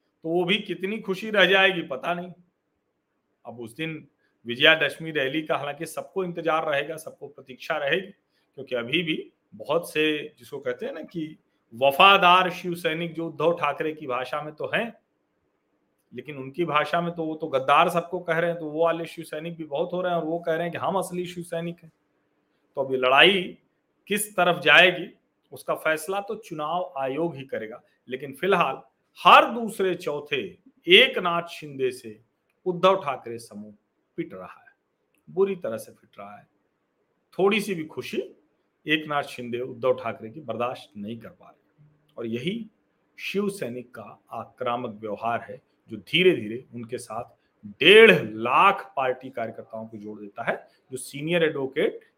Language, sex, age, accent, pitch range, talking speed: Hindi, male, 40-59, native, 130-180 Hz, 170 wpm